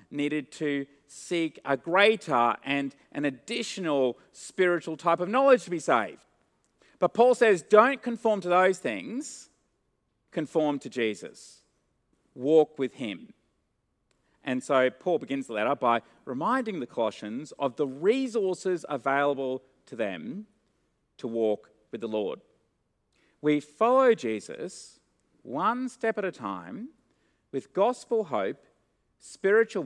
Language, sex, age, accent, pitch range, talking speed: English, male, 40-59, Australian, 130-220 Hz, 125 wpm